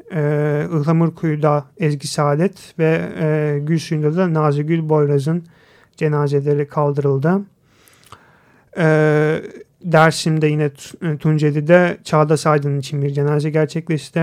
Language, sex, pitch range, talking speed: Turkish, male, 150-165 Hz, 95 wpm